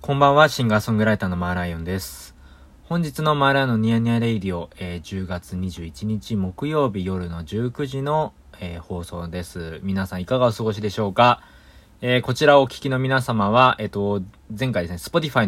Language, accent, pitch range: Japanese, native, 90-120 Hz